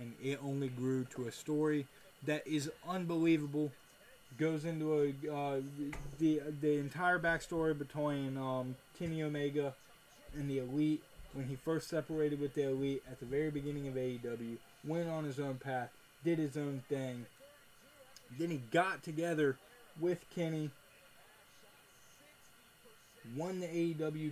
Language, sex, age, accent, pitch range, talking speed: English, male, 20-39, American, 130-155 Hz, 140 wpm